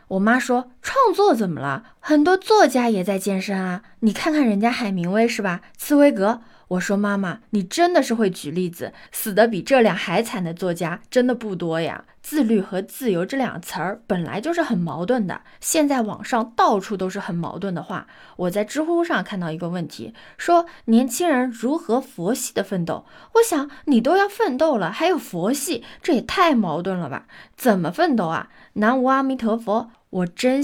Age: 20-39